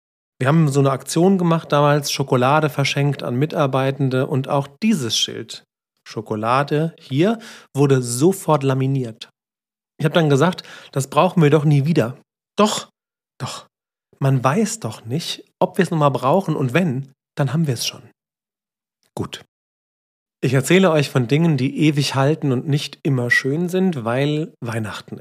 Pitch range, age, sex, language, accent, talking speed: 120-155 Hz, 40-59, male, German, German, 150 wpm